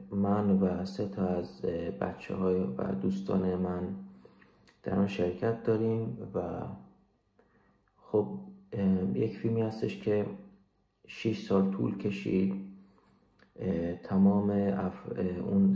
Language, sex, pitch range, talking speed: English, male, 90-100 Hz, 100 wpm